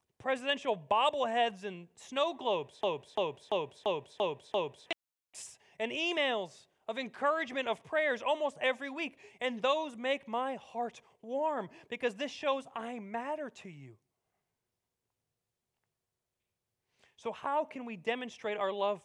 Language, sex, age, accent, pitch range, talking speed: English, male, 30-49, American, 185-265 Hz, 125 wpm